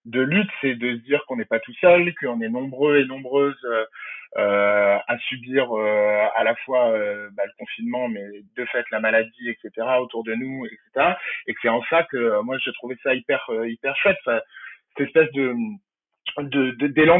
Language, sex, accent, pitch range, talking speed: French, male, French, 130-170 Hz, 200 wpm